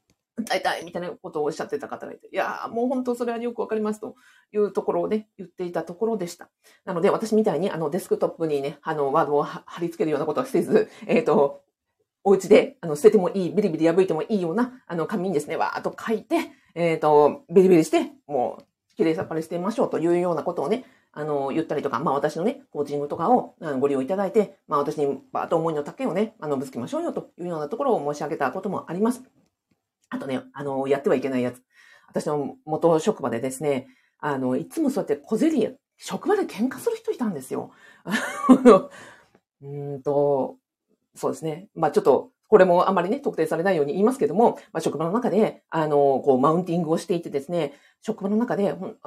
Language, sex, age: Japanese, female, 40-59